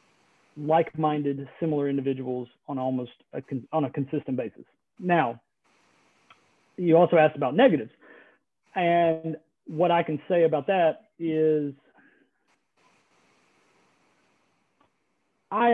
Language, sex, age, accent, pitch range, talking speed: English, male, 40-59, American, 145-170 Hz, 90 wpm